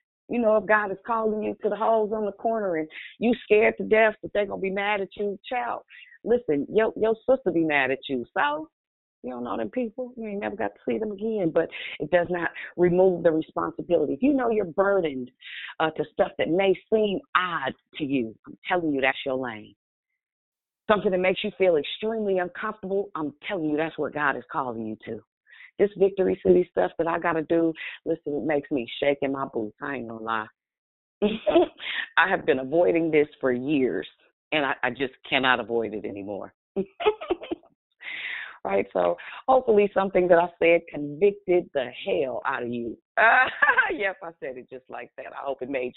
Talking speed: 205 wpm